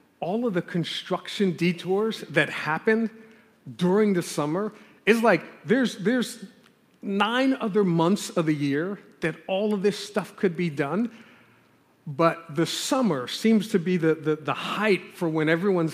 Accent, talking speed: American, 155 wpm